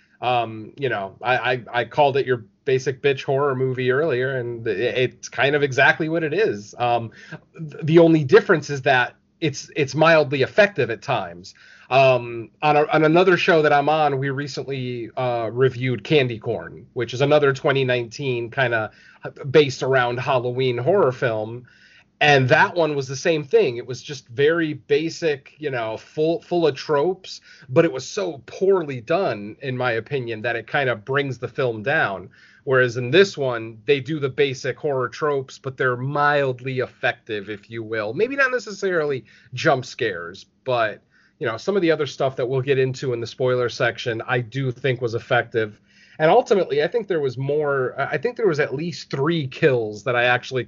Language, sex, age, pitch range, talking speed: English, male, 30-49, 120-155 Hz, 185 wpm